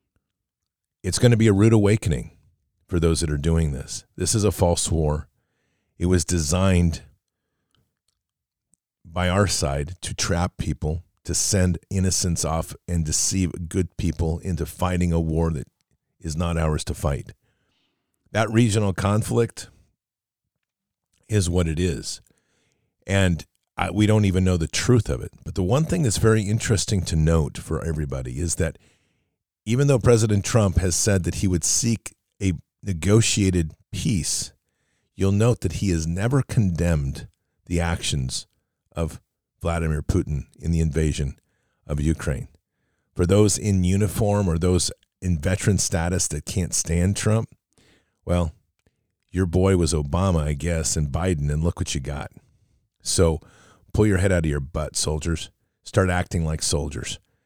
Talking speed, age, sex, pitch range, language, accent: 150 wpm, 50-69, male, 80-105 Hz, English, American